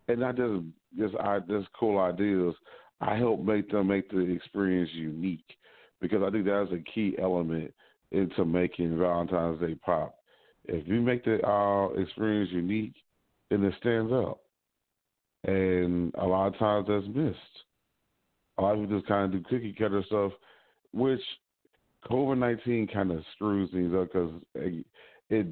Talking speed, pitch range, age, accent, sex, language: 160 wpm, 90-105 Hz, 40-59, American, male, English